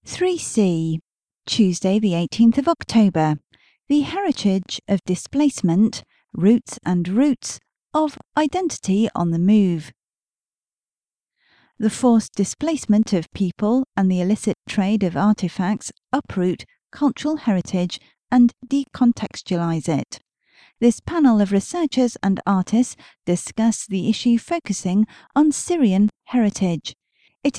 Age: 40-59